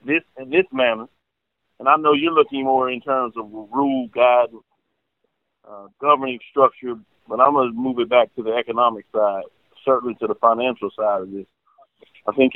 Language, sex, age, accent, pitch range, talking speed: English, male, 40-59, American, 115-140 Hz, 175 wpm